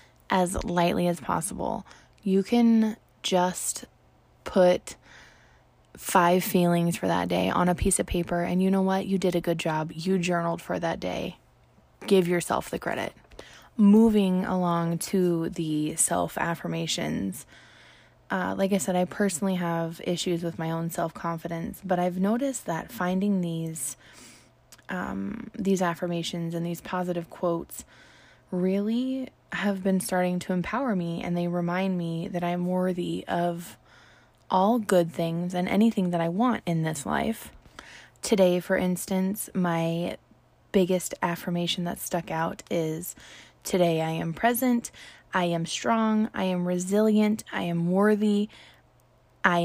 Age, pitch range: 20-39, 170-195 Hz